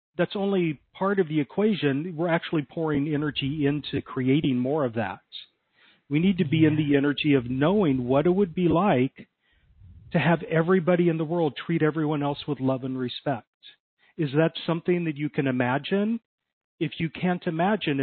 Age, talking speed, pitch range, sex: 40-59, 175 wpm, 135-175 Hz, male